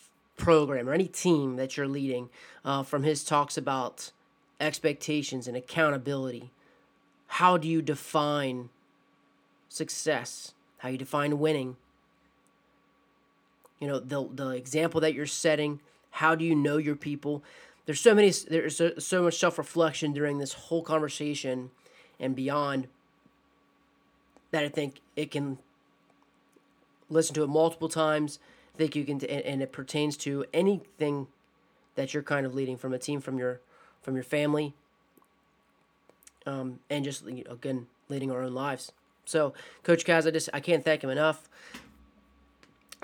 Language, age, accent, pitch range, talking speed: English, 30-49, American, 135-155 Hz, 145 wpm